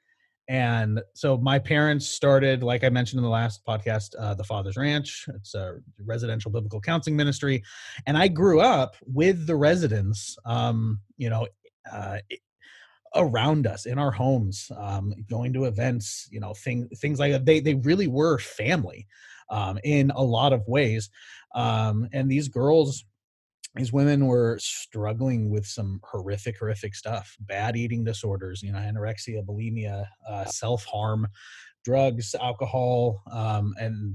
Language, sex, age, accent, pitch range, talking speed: English, male, 30-49, American, 105-140 Hz, 150 wpm